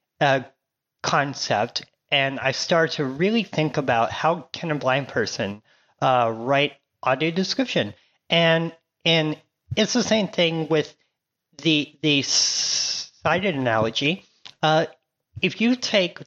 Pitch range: 135-165 Hz